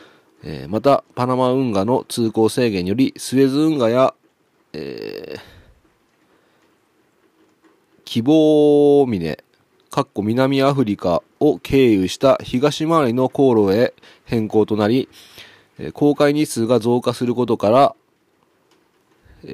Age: 30-49